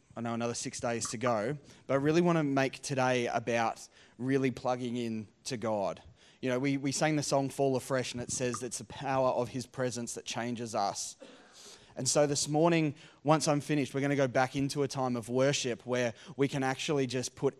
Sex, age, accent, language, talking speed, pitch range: male, 20-39, Australian, English, 220 wpm, 120-140 Hz